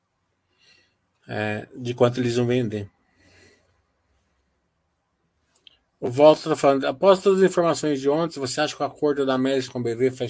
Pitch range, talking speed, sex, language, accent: 115-135 Hz, 150 wpm, male, Portuguese, Brazilian